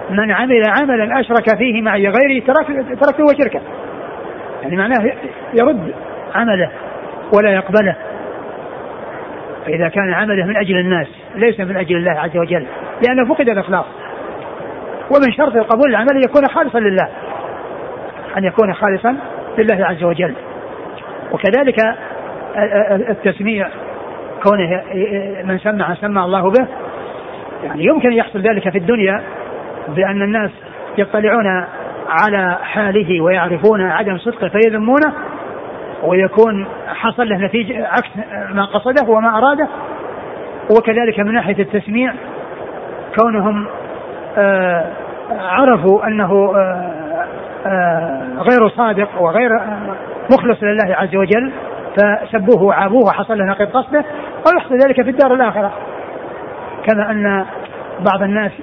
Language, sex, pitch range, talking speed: Arabic, male, 195-245 Hz, 105 wpm